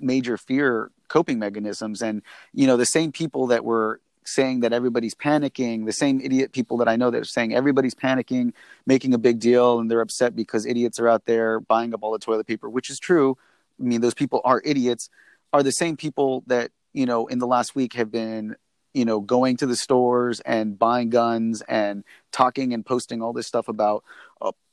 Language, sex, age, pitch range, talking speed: English, male, 30-49, 115-130 Hz, 210 wpm